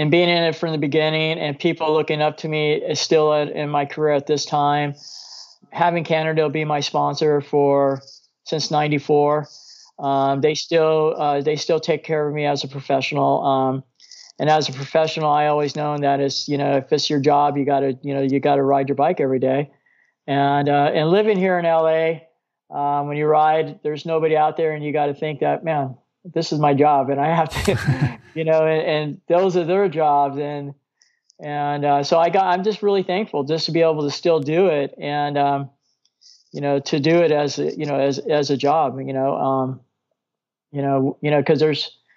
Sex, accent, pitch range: male, American, 140-160 Hz